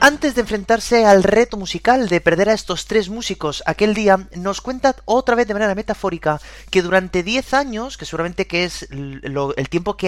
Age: 30-49